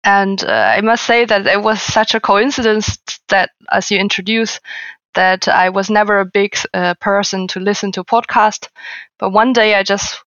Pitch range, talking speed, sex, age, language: 185-220 Hz, 185 wpm, female, 20-39, English